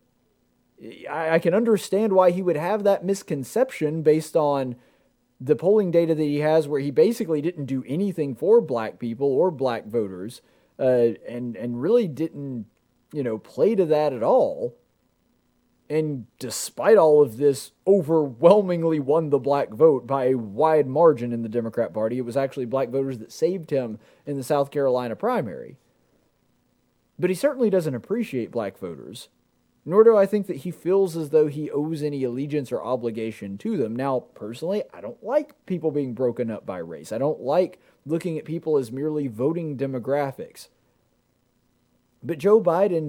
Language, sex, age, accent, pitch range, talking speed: English, male, 30-49, American, 125-160 Hz, 165 wpm